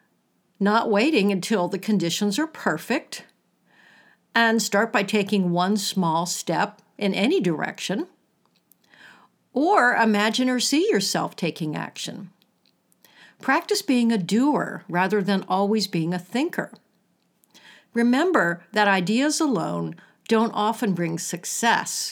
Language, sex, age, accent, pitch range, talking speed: English, female, 60-79, American, 190-255 Hz, 115 wpm